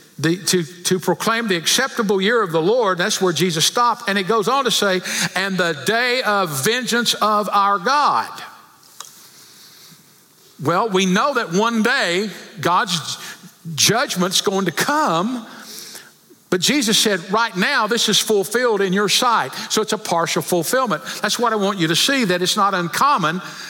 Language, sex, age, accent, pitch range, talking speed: English, male, 60-79, American, 160-210 Hz, 165 wpm